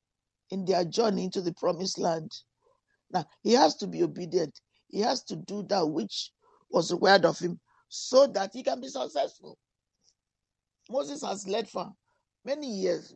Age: 50-69